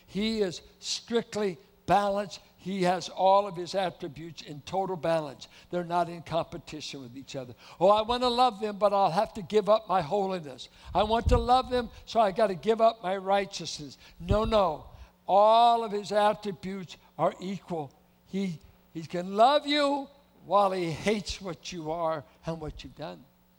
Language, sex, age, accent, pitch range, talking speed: English, male, 60-79, American, 145-205 Hz, 180 wpm